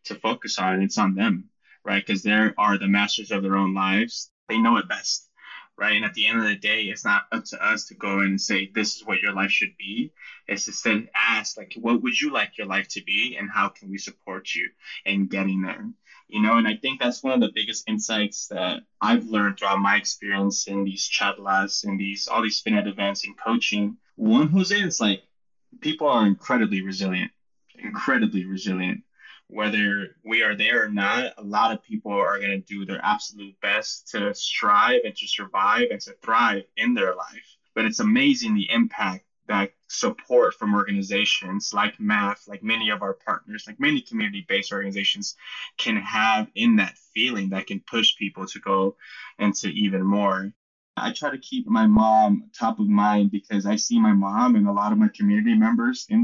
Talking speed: 205 wpm